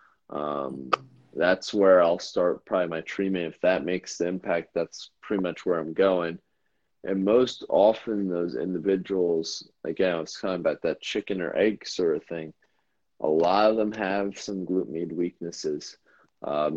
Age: 30-49